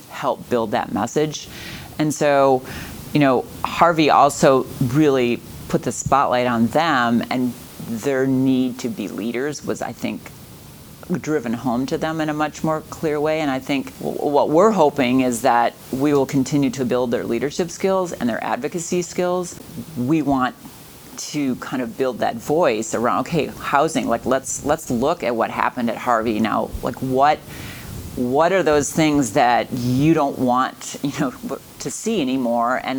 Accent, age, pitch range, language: American, 40-59, 125-155 Hz, English